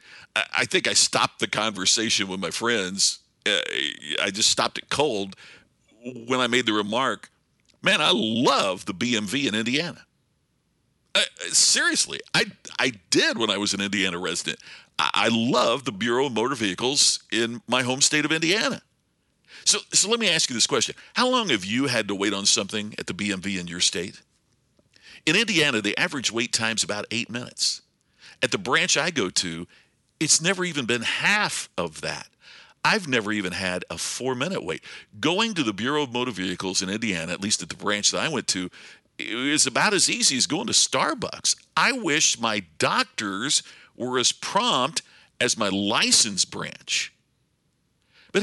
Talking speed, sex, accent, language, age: 175 wpm, male, American, English, 60-79